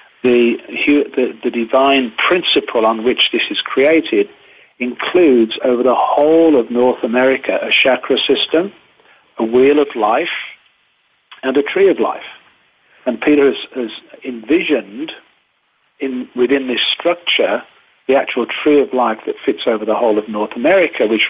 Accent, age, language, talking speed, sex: British, 50-69, English, 140 wpm, male